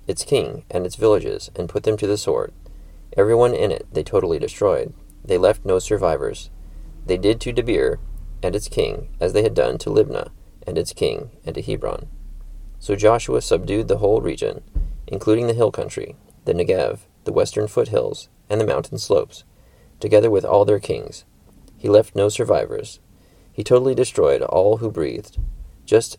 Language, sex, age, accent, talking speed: English, male, 30-49, American, 175 wpm